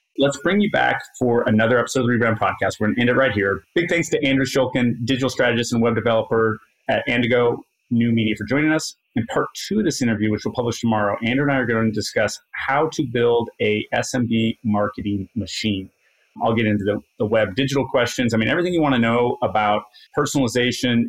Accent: American